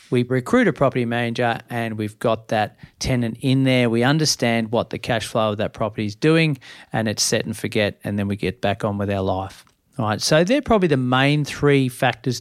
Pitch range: 115-145 Hz